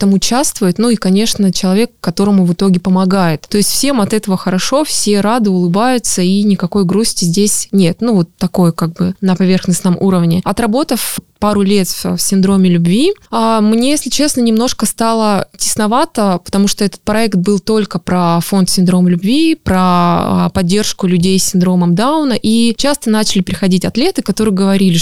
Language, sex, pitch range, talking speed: Russian, female, 185-225 Hz, 160 wpm